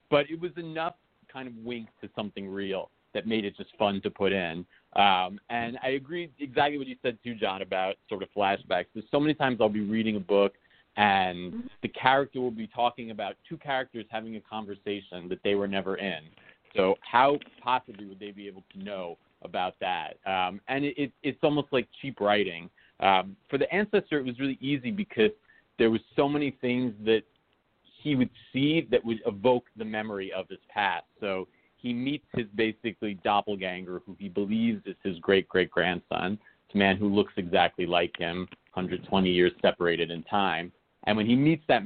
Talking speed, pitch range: 190 wpm, 95-125 Hz